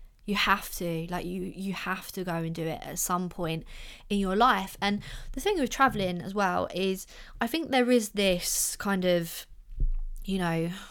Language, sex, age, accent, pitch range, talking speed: English, female, 20-39, British, 175-210 Hz, 195 wpm